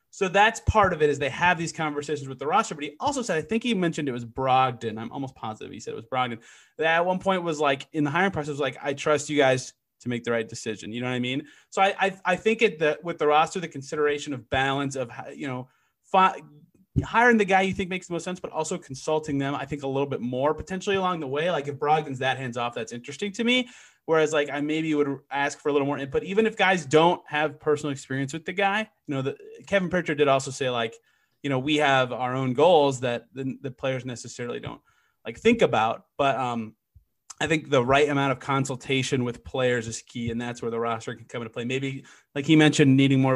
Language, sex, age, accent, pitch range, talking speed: English, male, 30-49, American, 125-160 Hz, 255 wpm